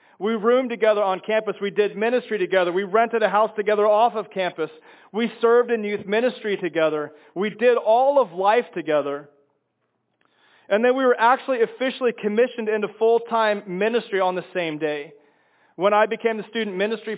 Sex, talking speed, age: male, 170 wpm, 30-49